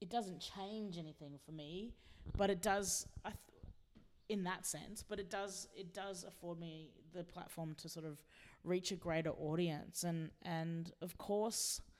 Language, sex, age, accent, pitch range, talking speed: English, female, 20-39, Australian, 155-195 Hz, 170 wpm